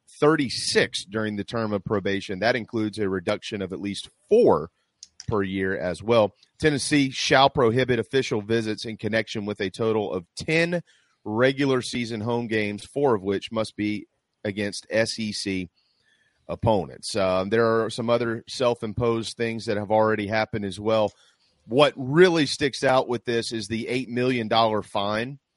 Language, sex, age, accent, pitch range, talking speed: English, male, 30-49, American, 105-125 Hz, 155 wpm